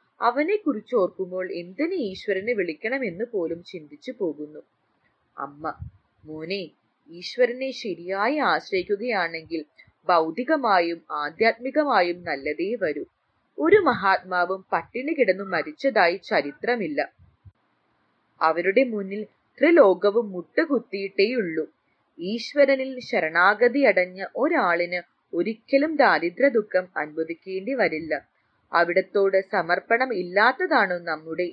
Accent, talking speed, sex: Indian, 80 wpm, female